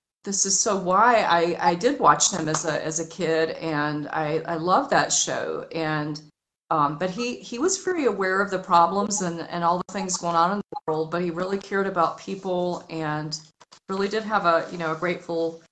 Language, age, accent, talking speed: English, 40-59, American, 215 wpm